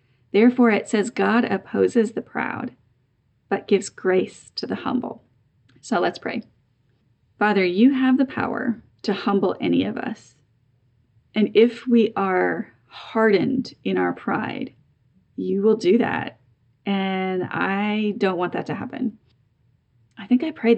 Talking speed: 140 wpm